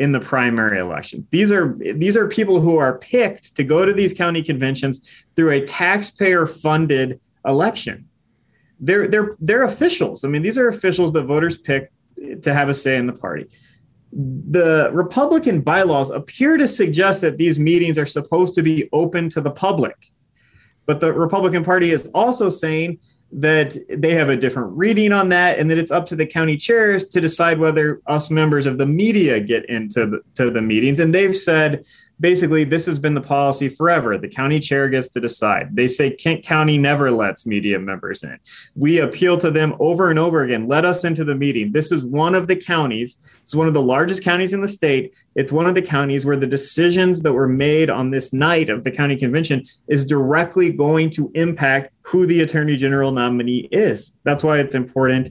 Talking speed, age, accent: 195 wpm, 30-49, American